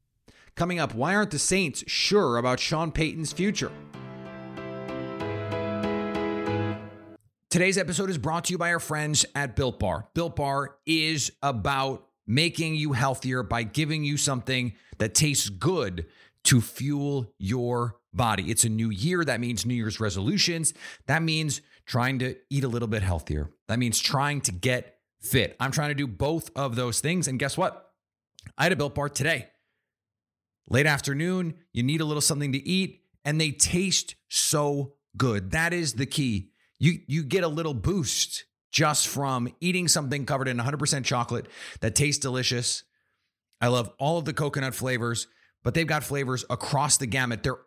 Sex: male